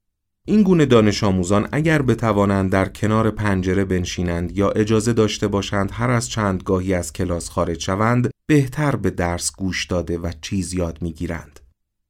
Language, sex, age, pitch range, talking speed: Persian, male, 30-49, 90-115 Hz, 155 wpm